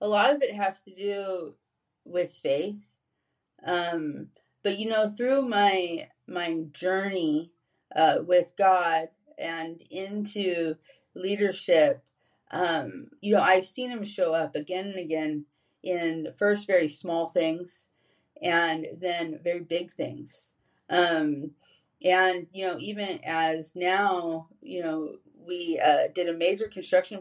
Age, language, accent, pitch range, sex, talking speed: 30-49, English, American, 160-195 Hz, female, 130 wpm